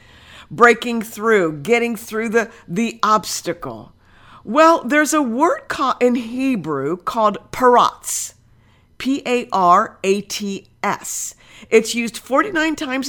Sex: female